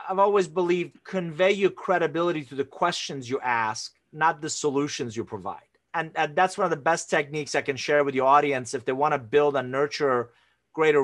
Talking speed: 205 wpm